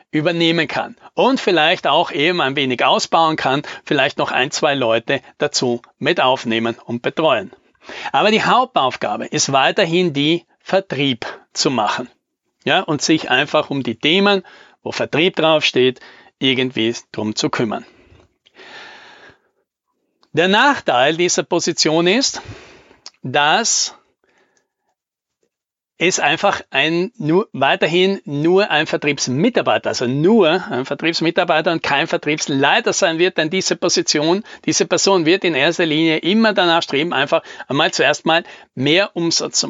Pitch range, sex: 150-195 Hz, male